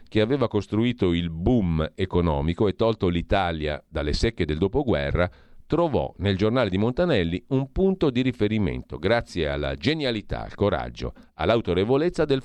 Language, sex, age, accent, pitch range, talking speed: Italian, male, 40-59, native, 85-115 Hz, 140 wpm